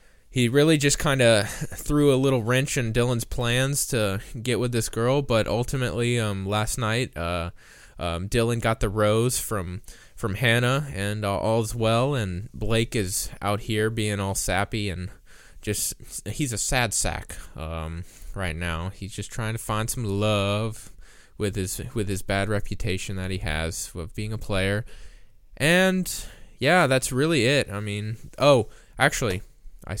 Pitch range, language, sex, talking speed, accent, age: 100-130 Hz, English, male, 160 wpm, American, 20-39